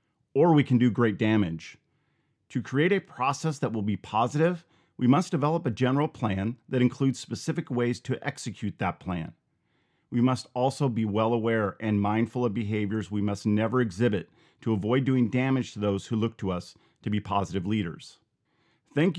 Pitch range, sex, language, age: 110-135 Hz, male, English, 40-59